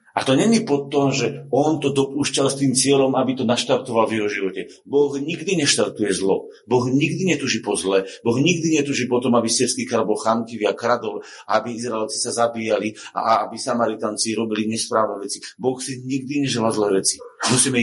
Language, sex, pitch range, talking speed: Slovak, male, 110-135 Hz, 185 wpm